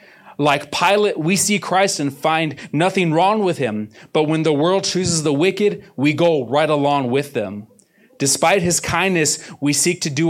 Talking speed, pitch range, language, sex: 180 wpm, 115-150 Hz, English, male